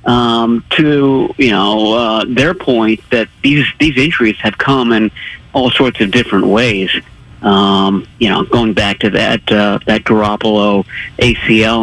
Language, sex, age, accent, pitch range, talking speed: English, male, 50-69, American, 110-135 Hz, 150 wpm